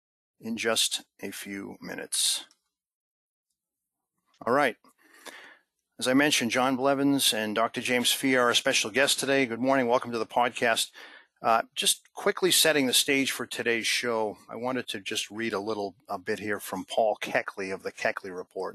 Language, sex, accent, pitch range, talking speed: English, male, American, 110-130 Hz, 170 wpm